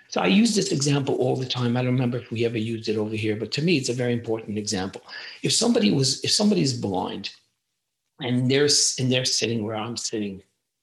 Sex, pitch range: male, 120-200 Hz